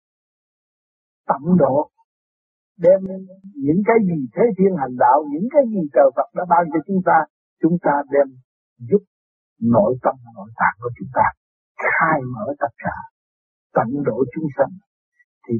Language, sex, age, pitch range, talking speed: Vietnamese, male, 60-79, 130-195 Hz, 155 wpm